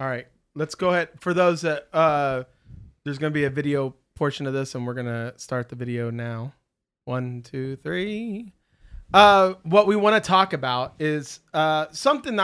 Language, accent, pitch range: English, American, 130-160 Hz